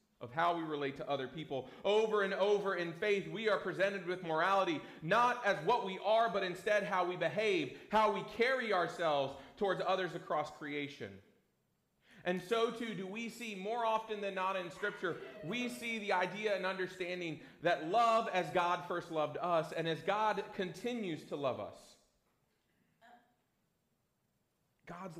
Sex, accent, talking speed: male, American, 160 wpm